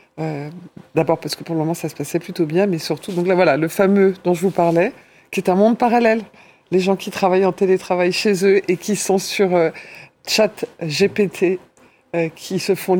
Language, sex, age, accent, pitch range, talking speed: French, female, 50-69, French, 165-200 Hz, 215 wpm